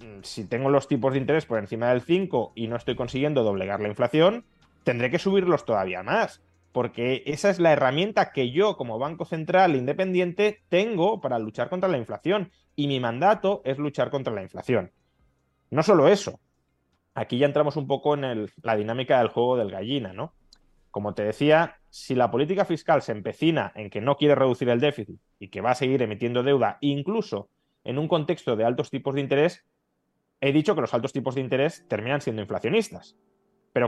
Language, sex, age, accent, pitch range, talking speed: Spanish, male, 20-39, Spanish, 120-170 Hz, 190 wpm